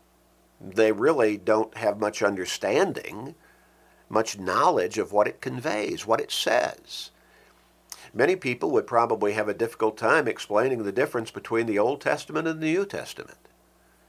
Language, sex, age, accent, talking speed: English, male, 50-69, American, 145 wpm